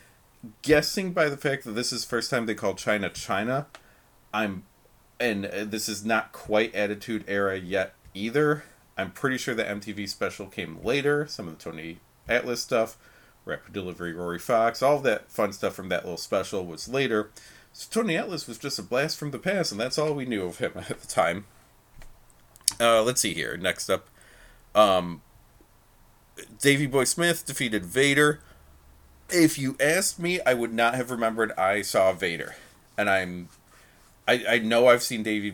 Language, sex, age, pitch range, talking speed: English, male, 30-49, 100-125 Hz, 175 wpm